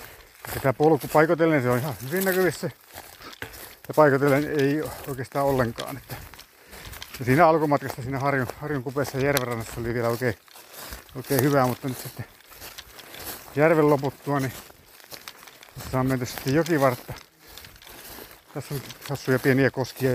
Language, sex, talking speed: Finnish, male, 120 wpm